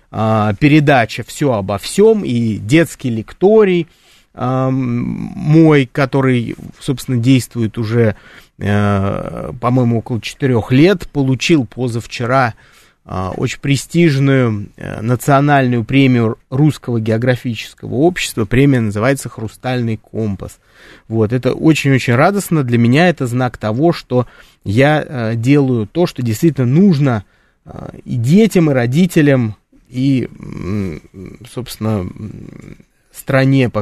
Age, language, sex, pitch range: 30-49, Russian, male, 115-150 Hz